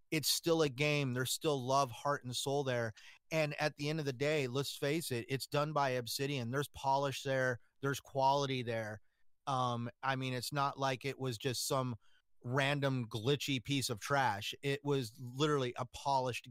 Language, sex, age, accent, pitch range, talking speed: English, male, 30-49, American, 130-160 Hz, 185 wpm